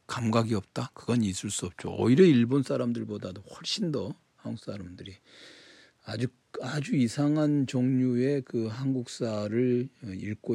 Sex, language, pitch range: male, Korean, 100-125 Hz